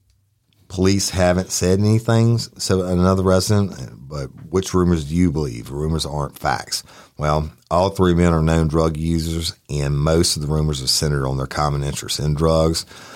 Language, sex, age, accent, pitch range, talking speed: English, male, 40-59, American, 75-95 Hz, 170 wpm